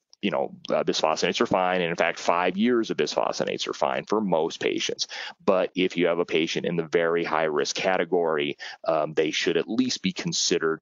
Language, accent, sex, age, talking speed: Italian, American, male, 30-49, 205 wpm